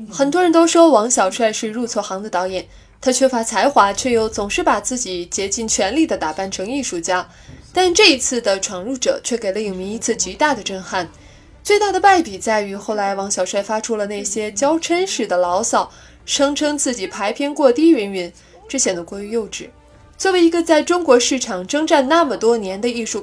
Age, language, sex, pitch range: 20-39, Chinese, female, 195-290 Hz